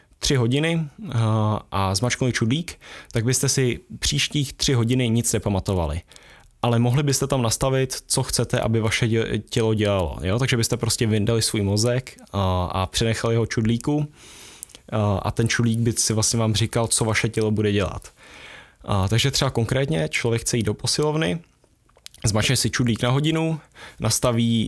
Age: 10-29